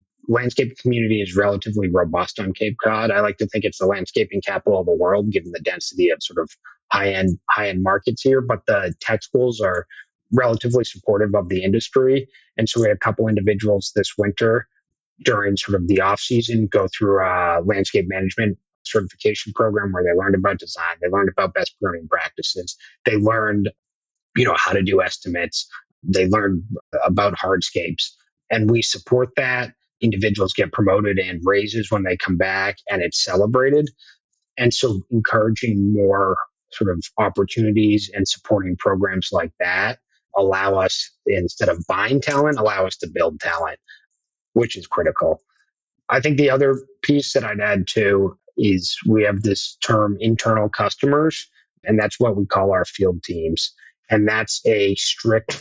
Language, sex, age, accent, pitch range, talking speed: English, male, 30-49, American, 100-115 Hz, 170 wpm